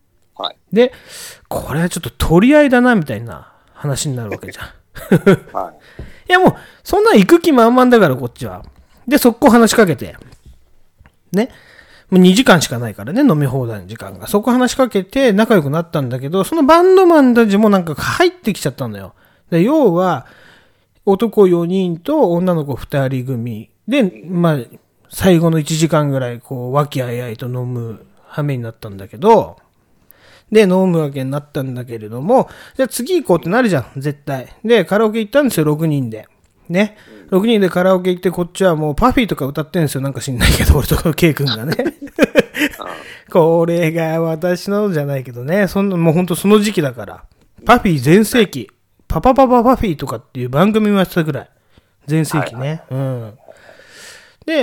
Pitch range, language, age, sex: 130-215 Hz, Japanese, 30-49, male